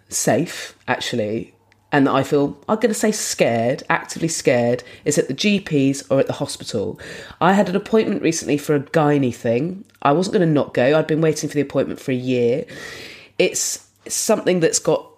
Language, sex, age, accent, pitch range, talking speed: English, female, 30-49, British, 145-205 Hz, 190 wpm